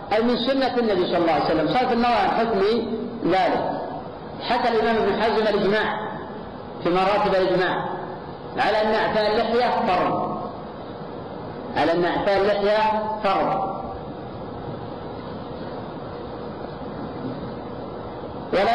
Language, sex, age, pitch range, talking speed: Arabic, female, 50-69, 200-225 Hz, 100 wpm